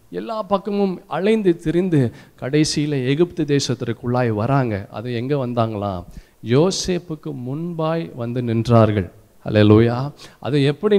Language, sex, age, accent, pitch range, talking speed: Tamil, male, 50-69, native, 120-180 Hz, 105 wpm